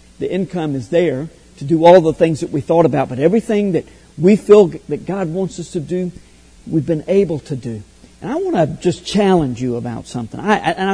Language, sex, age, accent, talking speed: English, male, 50-69, American, 220 wpm